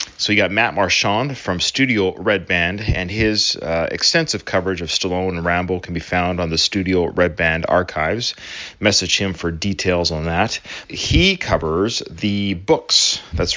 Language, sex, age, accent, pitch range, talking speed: English, male, 30-49, American, 90-115 Hz, 170 wpm